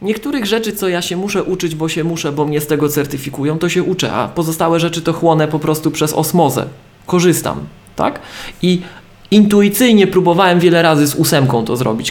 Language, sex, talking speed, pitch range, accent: Polish, male, 190 wpm, 145-185 Hz, native